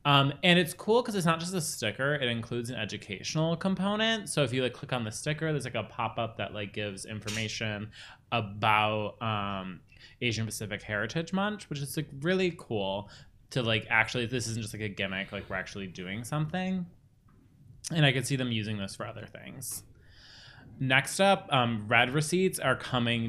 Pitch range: 105-140 Hz